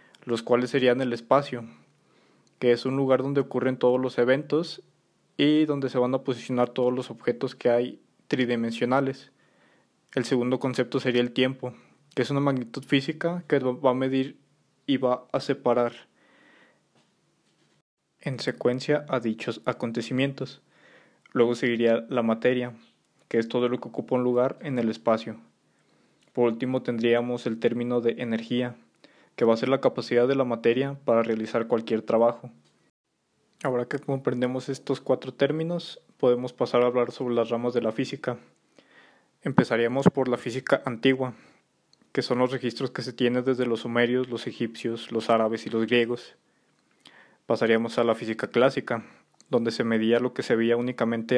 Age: 20-39